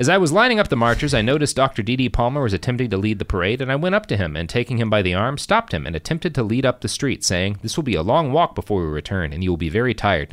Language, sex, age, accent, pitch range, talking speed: English, male, 30-49, American, 95-125 Hz, 320 wpm